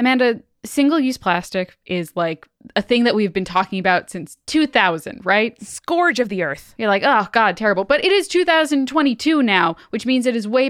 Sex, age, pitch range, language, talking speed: female, 10-29, 180-225 Hz, English, 190 wpm